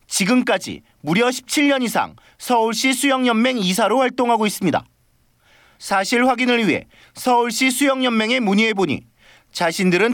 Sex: male